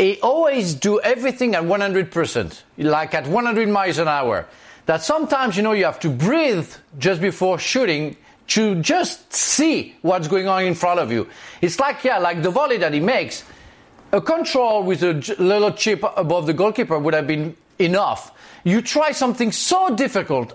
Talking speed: 175 wpm